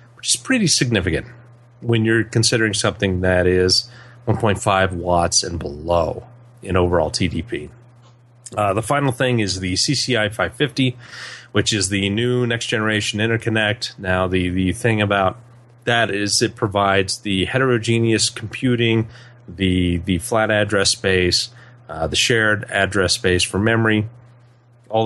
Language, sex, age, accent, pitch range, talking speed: English, male, 30-49, American, 100-120 Hz, 135 wpm